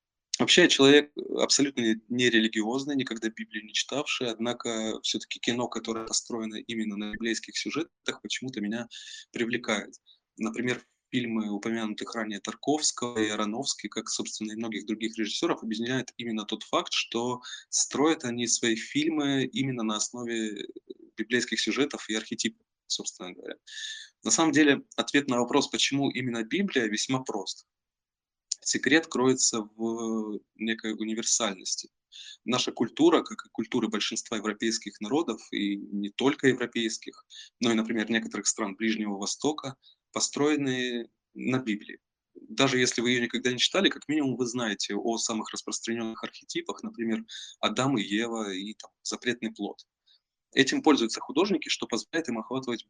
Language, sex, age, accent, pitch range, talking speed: Russian, male, 20-39, native, 110-130 Hz, 135 wpm